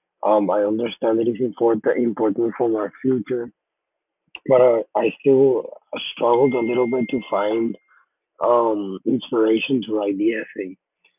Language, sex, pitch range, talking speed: English, male, 110-125 Hz, 140 wpm